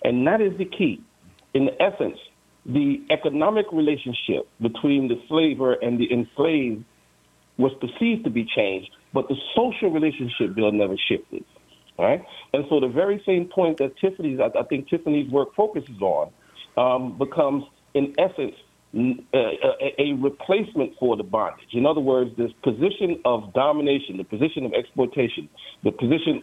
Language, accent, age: English, American, 40-59